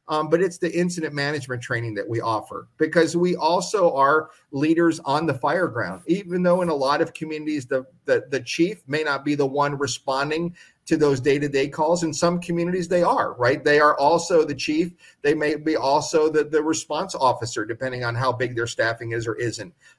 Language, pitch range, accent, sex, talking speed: English, 135-160 Hz, American, male, 210 wpm